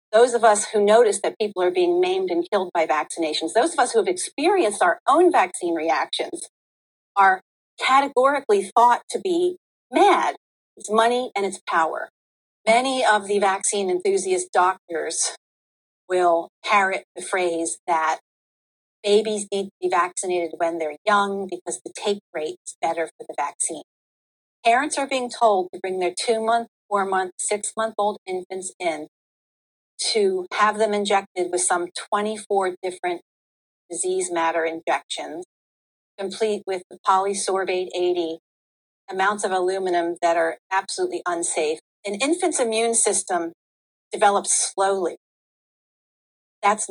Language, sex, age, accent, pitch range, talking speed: English, female, 40-59, American, 185-240 Hz, 135 wpm